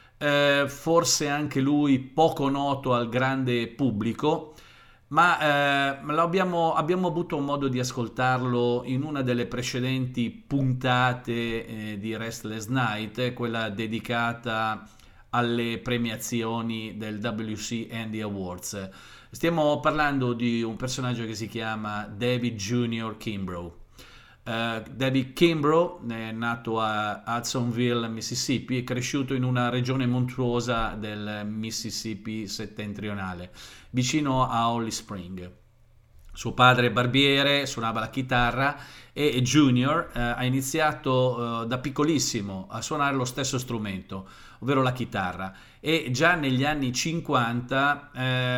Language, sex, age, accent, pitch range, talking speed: Italian, male, 40-59, native, 115-135 Hz, 120 wpm